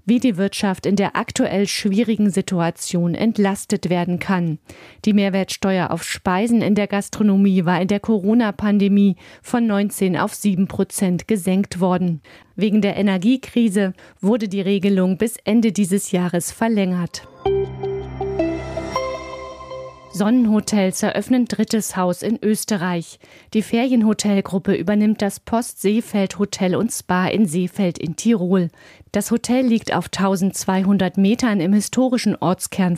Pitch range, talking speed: 185-215 Hz, 125 wpm